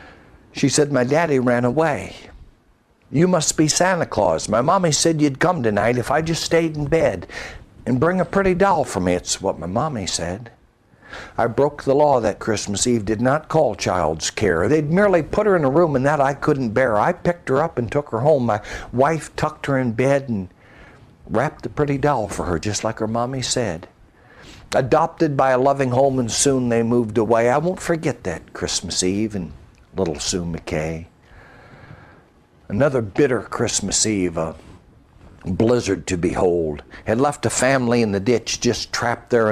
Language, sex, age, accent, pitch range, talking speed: English, male, 60-79, American, 100-145 Hz, 185 wpm